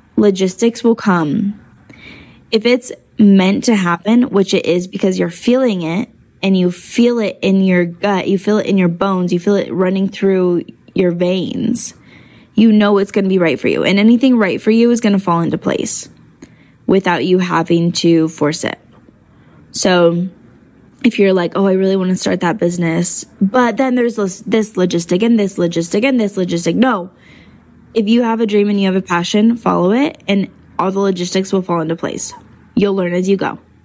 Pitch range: 175-210 Hz